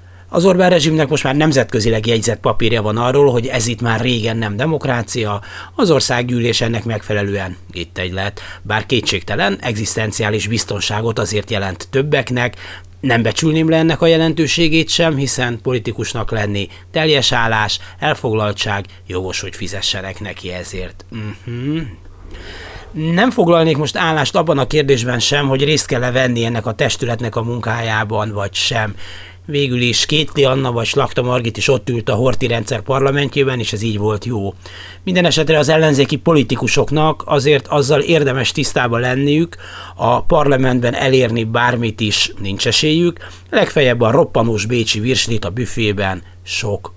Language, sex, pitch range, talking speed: Hungarian, male, 100-140 Hz, 145 wpm